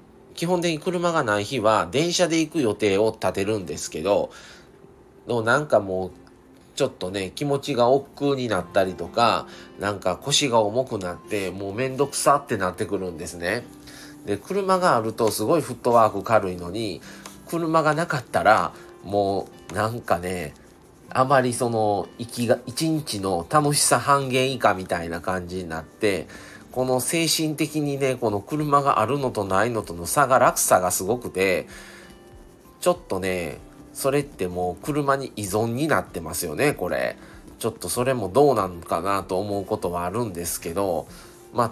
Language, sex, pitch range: Japanese, male, 100-145 Hz